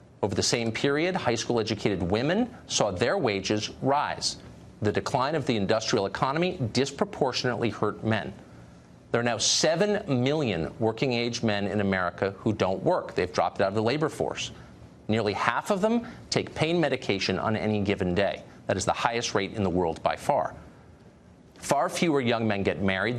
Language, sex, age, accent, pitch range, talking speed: English, male, 50-69, American, 100-130 Hz, 175 wpm